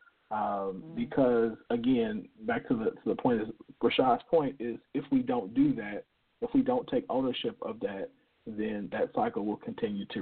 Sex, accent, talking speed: male, American, 180 wpm